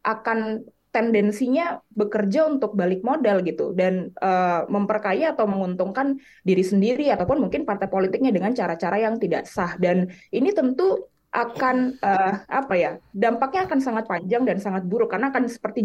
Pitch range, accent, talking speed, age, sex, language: 190-245 Hz, native, 150 wpm, 20-39, female, Indonesian